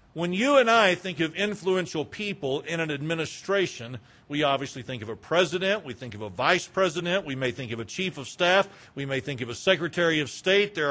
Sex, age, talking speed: male, 50-69, 220 wpm